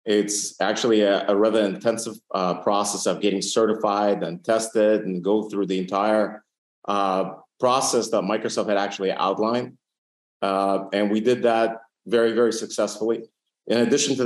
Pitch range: 100-120 Hz